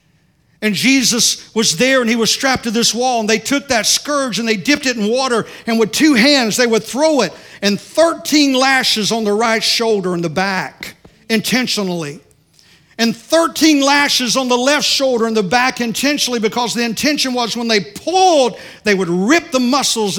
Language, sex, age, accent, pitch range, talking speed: English, male, 50-69, American, 165-240 Hz, 190 wpm